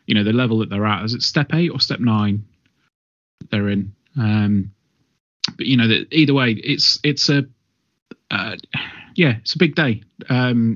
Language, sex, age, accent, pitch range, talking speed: English, male, 30-49, British, 105-130 Hz, 180 wpm